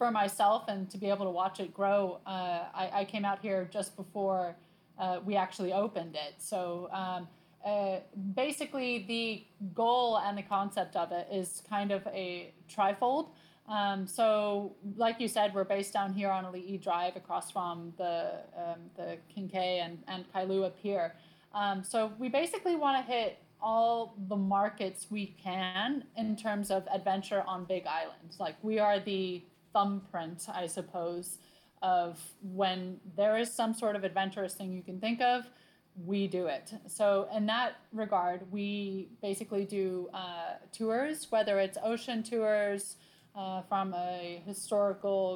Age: 20-39